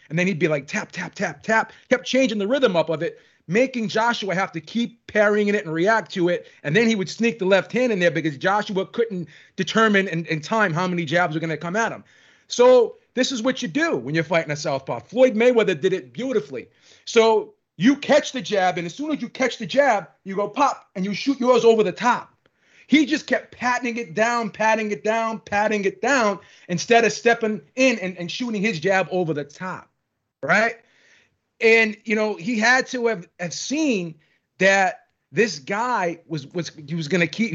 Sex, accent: male, American